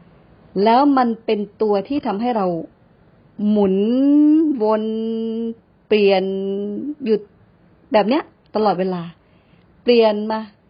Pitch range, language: 180-235 Hz, Thai